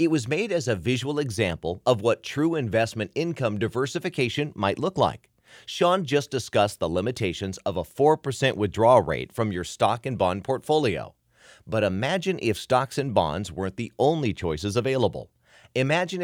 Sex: male